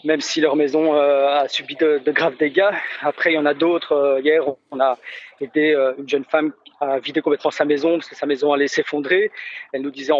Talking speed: 210 wpm